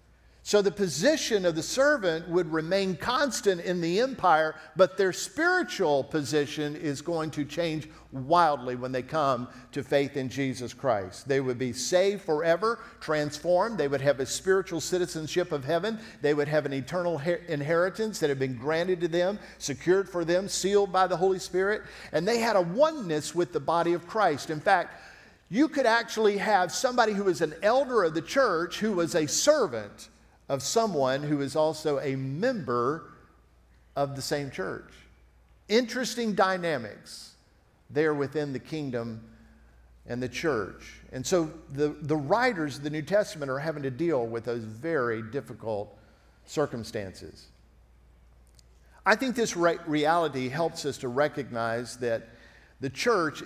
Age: 50-69